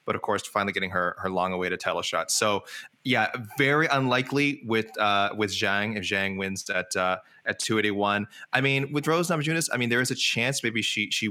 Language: English